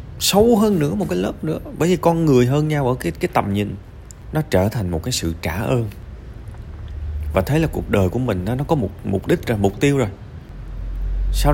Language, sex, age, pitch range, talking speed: Vietnamese, male, 20-39, 85-120 Hz, 230 wpm